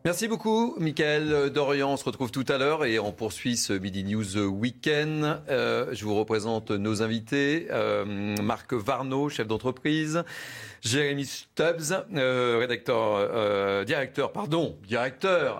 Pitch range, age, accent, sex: 110-140 Hz, 40-59, French, male